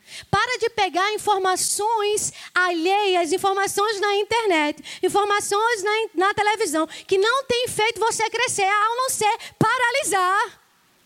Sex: female